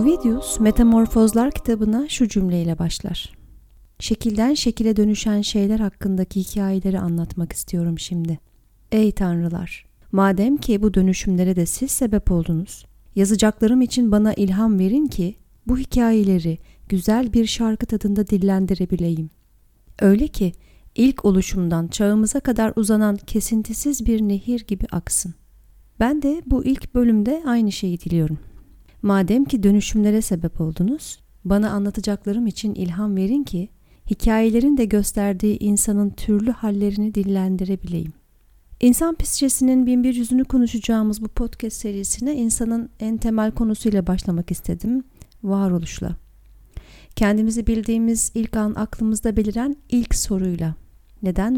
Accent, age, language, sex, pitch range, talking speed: native, 40-59, Turkish, female, 195-235 Hz, 115 wpm